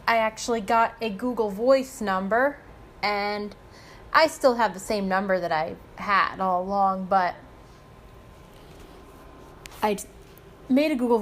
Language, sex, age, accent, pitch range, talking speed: English, female, 20-39, American, 205-260 Hz, 130 wpm